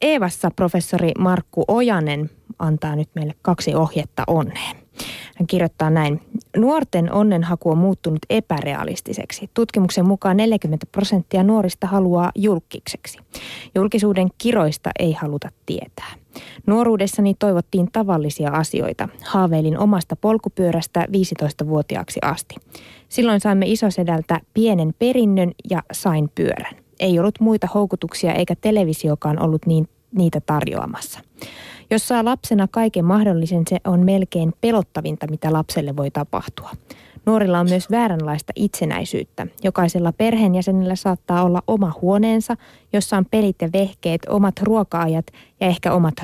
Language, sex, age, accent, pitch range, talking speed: Finnish, female, 20-39, native, 165-205 Hz, 115 wpm